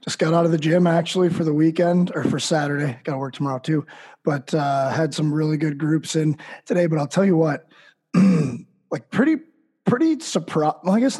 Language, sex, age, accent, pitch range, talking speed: English, male, 20-39, American, 145-170 Hz, 210 wpm